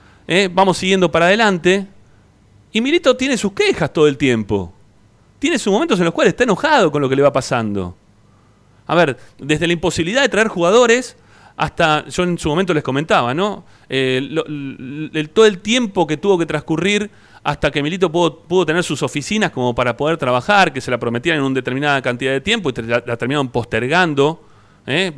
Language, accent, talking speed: Spanish, Argentinian, 185 wpm